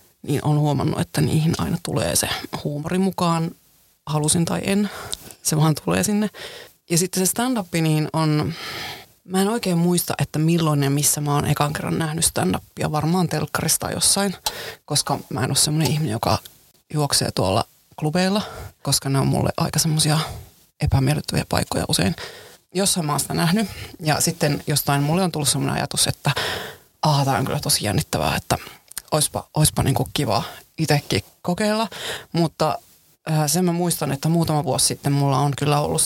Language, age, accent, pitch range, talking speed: Finnish, 30-49, native, 140-170 Hz, 165 wpm